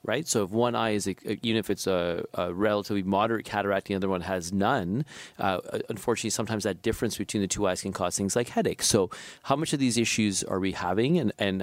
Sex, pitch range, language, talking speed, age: male, 95-110 Hz, English, 225 wpm, 30-49